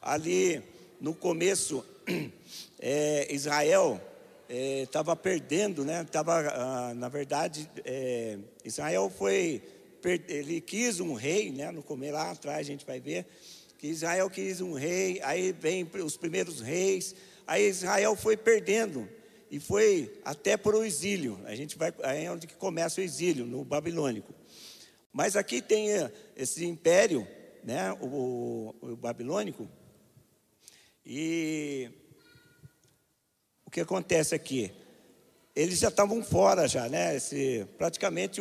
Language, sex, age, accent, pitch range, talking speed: Portuguese, male, 50-69, Brazilian, 135-190 Hz, 115 wpm